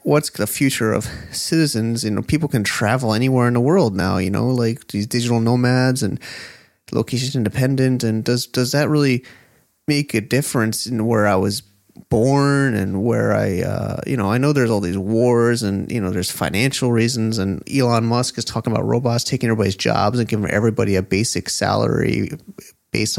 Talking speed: 185 wpm